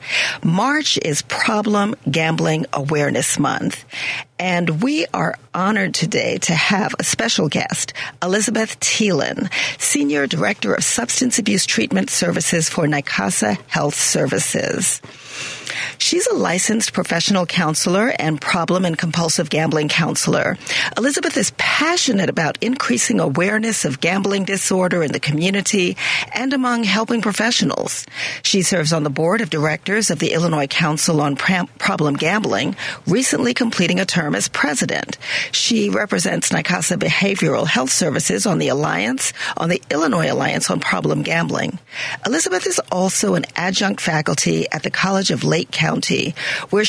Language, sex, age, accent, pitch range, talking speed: English, female, 40-59, American, 160-215 Hz, 135 wpm